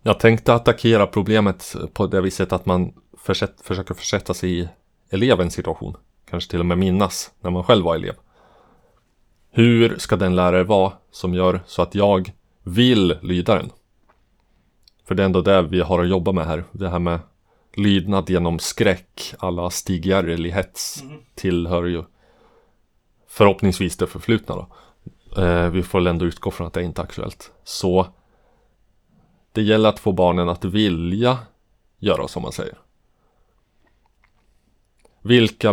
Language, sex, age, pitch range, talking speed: Swedish, male, 30-49, 90-105 Hz, 145 wpm